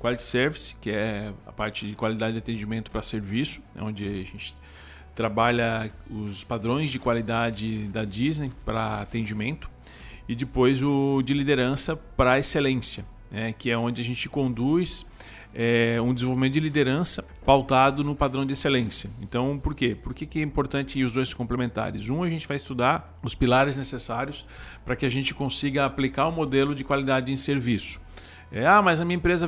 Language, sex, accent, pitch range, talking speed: Portuguese, male, Brazilian, 115-145 Hz, 175 wpm